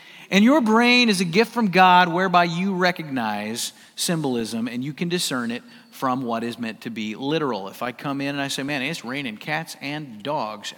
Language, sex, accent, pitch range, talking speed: English, male, American, 145-225 Hz, 205 wpm